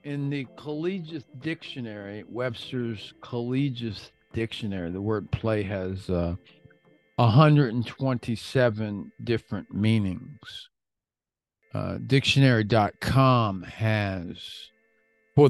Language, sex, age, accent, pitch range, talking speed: English, male, 50-69, American, 100-140 Hz, 75 wpm